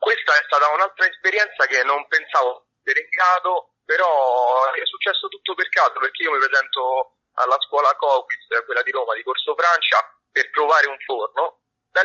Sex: male